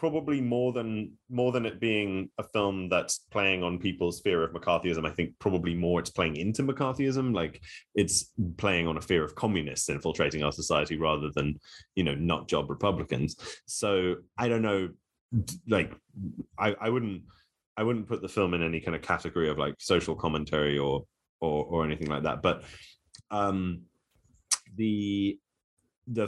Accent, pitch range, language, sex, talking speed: British, 80-105 Hz, English, male, 170 wpm